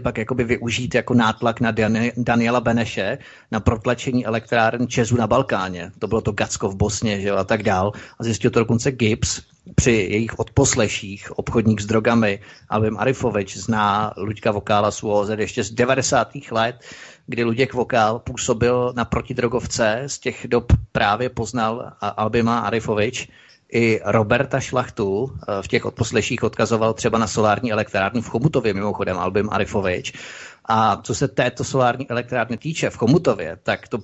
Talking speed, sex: 150 wpm, male